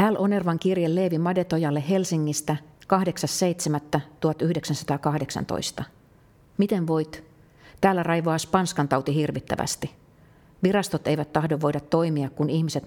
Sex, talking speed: female, 95 wpm